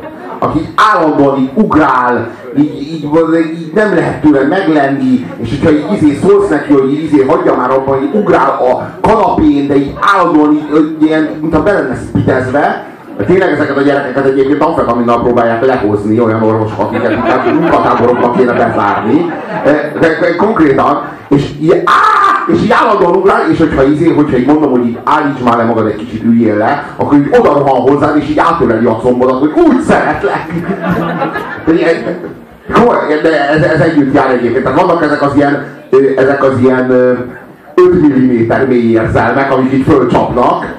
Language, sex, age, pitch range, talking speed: Hungarian, male, 30-49, 130-170 Hz, 160 wpm